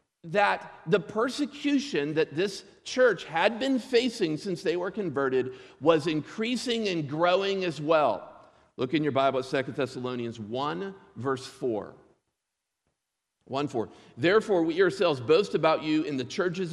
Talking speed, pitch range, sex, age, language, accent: 145 wpm, 140-190 Hz, male, 50-69, English, American